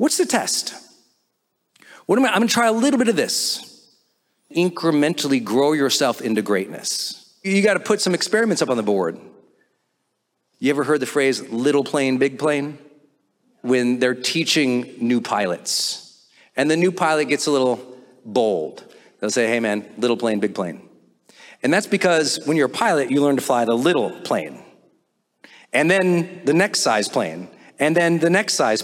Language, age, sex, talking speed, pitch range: English, 40-59, male, 175 wpm, 125-175 Hz